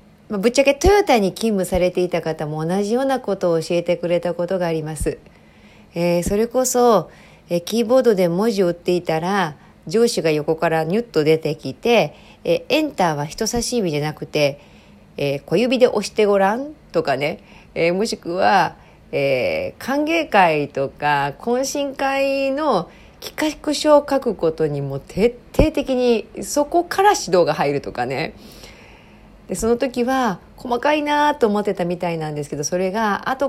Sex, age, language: female, 40-59, Japanese